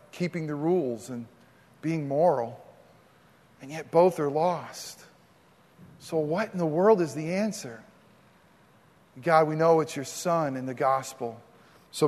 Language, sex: English, male